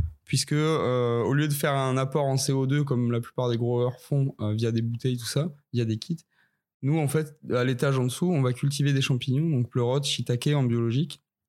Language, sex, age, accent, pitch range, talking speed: French, male, 20-39, French, 120-140 Hz, 220 wpm